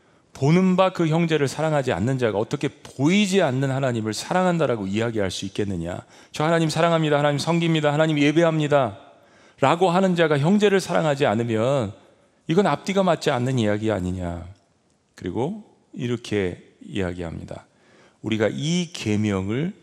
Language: Korean